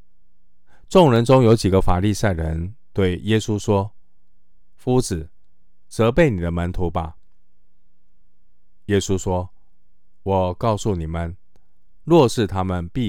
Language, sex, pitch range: Chinese, male, 85-105 Hz